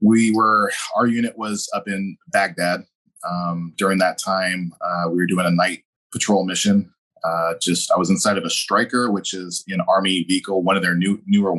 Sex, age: male, 20-39